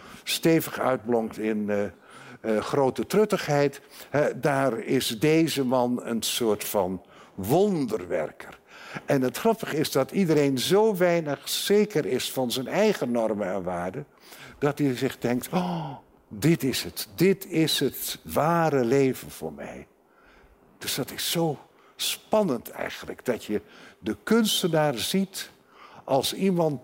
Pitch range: 115-180 Hz